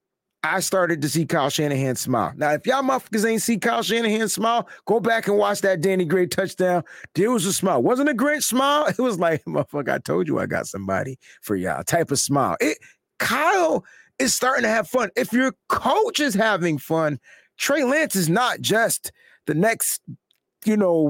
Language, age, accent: English, 30-49, American